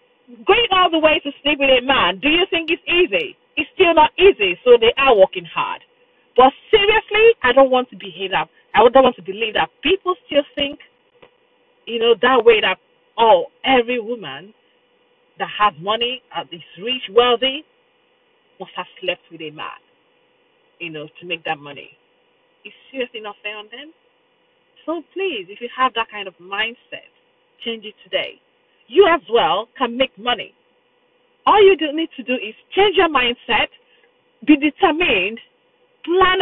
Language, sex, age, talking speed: English, female, 40-59, 170 wpm